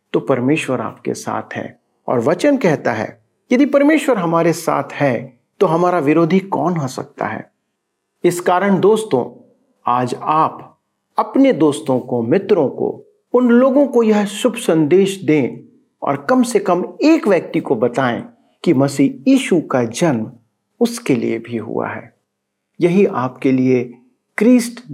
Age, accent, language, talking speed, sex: 50-69, native, Hindi, 145 wpm, male